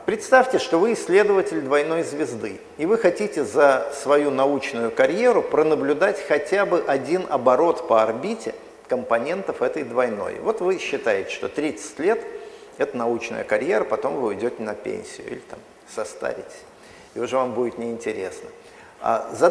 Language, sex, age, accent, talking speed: Russian, male, 40-59, native, 140 wpm